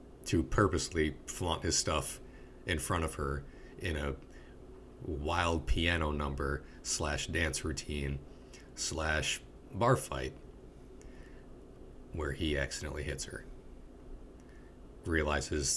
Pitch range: 70-85 Hz